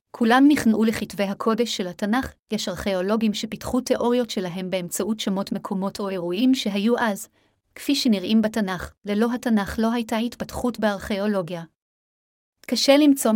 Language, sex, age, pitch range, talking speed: Hebrew, female, 30-49, 200-230 Hz, 130 wpm